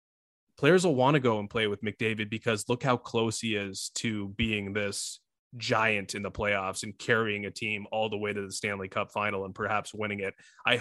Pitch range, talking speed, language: 110-130 Hz, 215 wpm, English